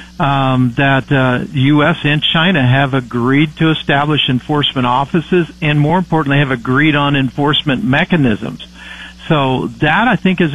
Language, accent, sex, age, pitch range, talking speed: English, American, male, 50-69, 130-160 Hz, 140 wpm